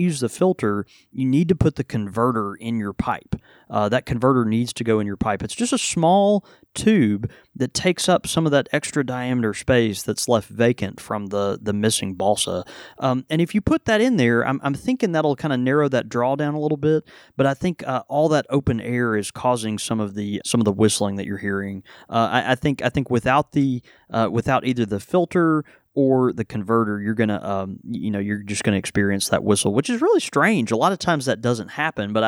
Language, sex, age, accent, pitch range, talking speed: English, male, 30-49, American, 105-145 Hz, 230 wpm